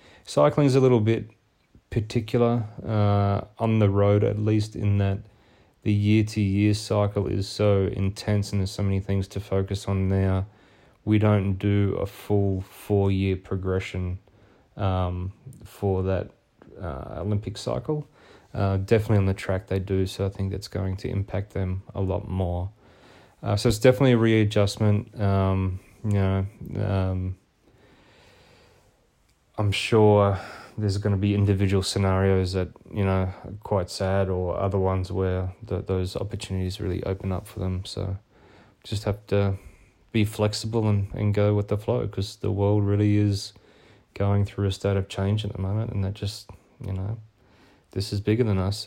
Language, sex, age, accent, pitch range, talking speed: English, male, 20-39, Australian, 95-105 Hz, 160 wpm